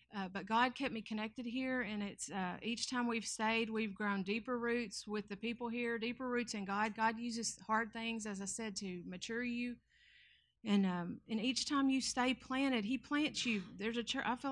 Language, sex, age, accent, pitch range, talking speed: English, female, 40-59, American, 210-245 Hz, 215 wpm